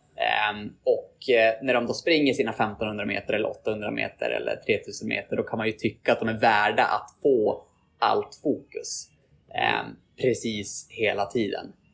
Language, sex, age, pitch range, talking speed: Swedish, male, 20-39, 105-135 Hz, 165 wpm